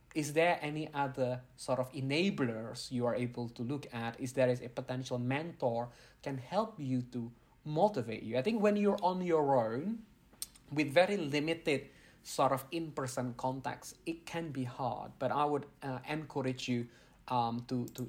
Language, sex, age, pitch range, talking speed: English, male, 20-39, 125-140 Hz, 175 wpm